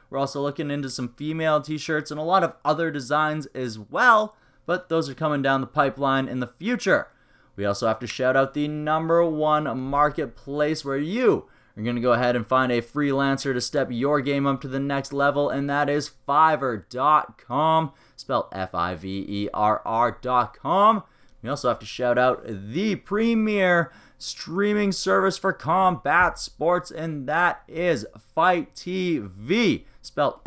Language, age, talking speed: English, 30-49, 160 wpm